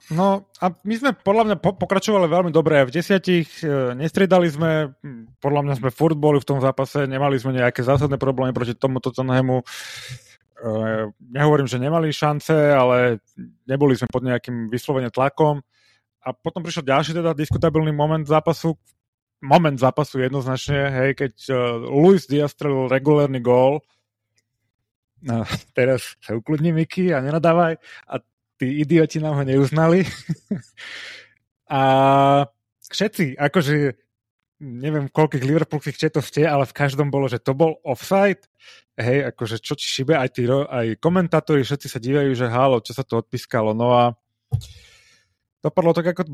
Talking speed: 150 wpm